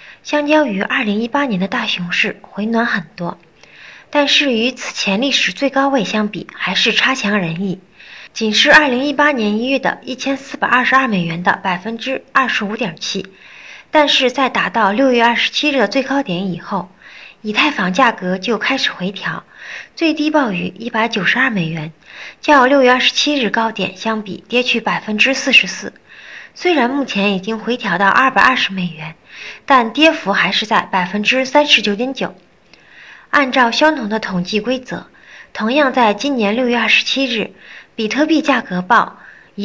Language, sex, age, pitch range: Chinese, female, 30-49, 195-270 Hz